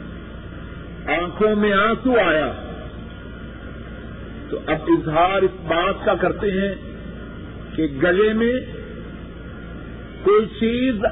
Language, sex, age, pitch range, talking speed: Urdu, male, 50-69, 175-245 Hz, 90 wpm